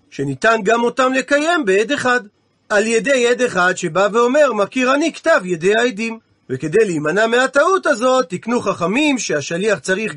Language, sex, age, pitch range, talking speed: Hebrew, male, 40-59, 200-270 Hz, 155 wpm